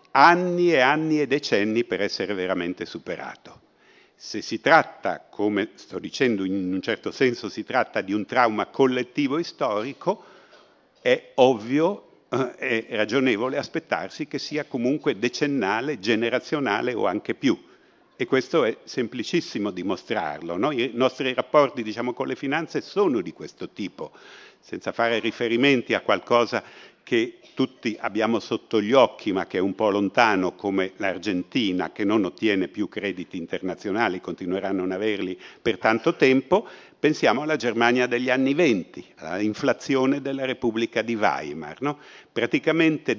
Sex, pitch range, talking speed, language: male, 115-155 Hz, 145 wpm, Italian